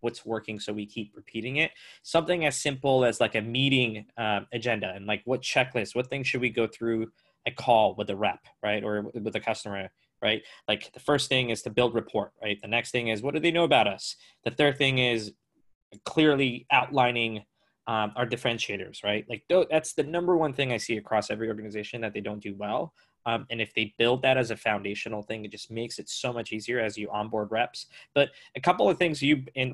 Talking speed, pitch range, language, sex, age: 220 wpm, 110-130 Hz, English, male, 20-39